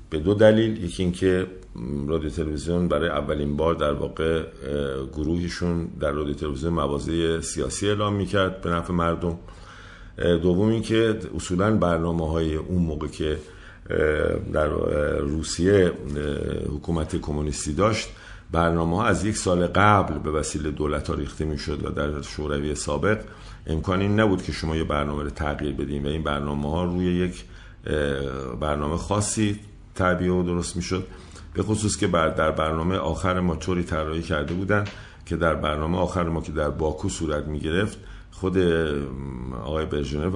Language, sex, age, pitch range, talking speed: Persian, male, 50-69, 75-95 Hz, 145 wpm